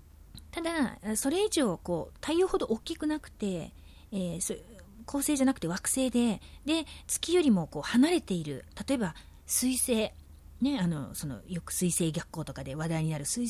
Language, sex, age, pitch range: Japanese, female, 40-59, 180-280 Hz